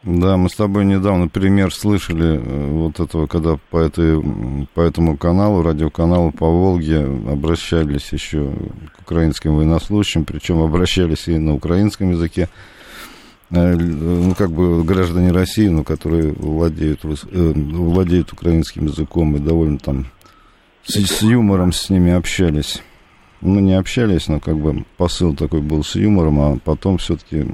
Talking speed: 145 wpm